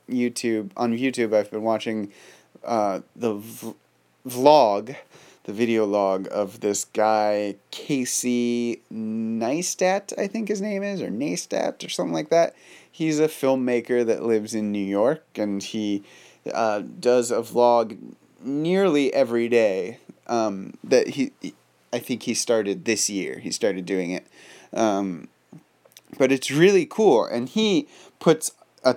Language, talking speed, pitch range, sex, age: English, 140 wpm, 105-130 Hz, male, 30-49